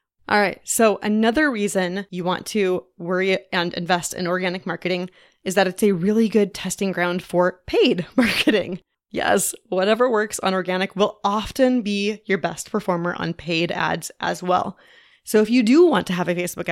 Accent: American